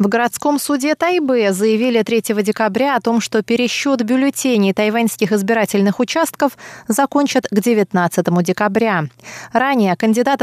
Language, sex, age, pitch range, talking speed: Russian, female, 20-39, 195-250 Hz, 120 wpm